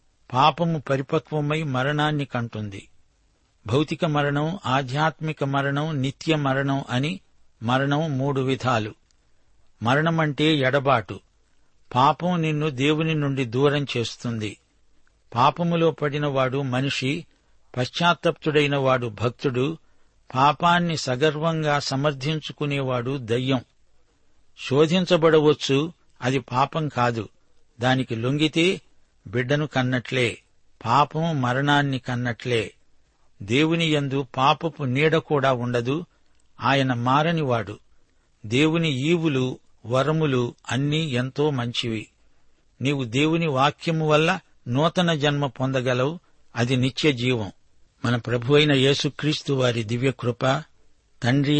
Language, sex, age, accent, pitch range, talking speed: Telugu, male, 60-79, native, 125-150 Hz, 85 wpm